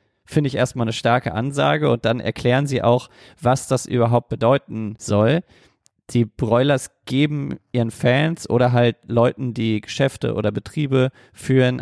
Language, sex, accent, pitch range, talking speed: German, male, German, 110-130 Hz, 145 wpm